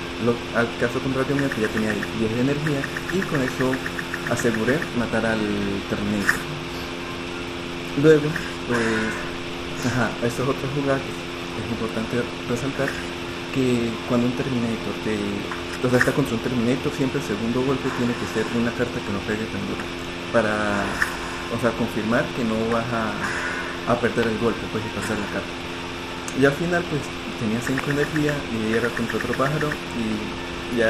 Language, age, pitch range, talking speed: English, 50-69, 85-120 Hz, 155 wpm